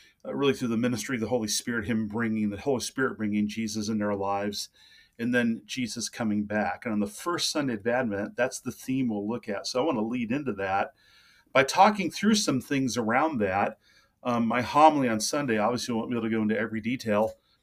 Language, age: English, 40-59